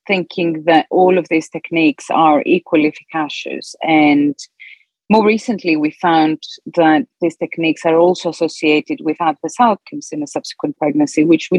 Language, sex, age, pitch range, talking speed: English, female, 40-59, 155-220 Hz, 150 wpm